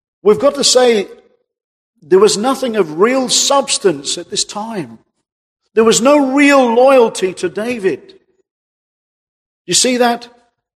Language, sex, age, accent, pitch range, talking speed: English, male, 50-69, British, 180-265 Hz, 130 wpm